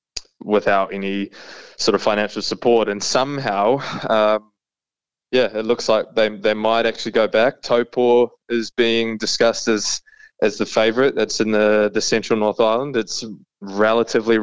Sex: male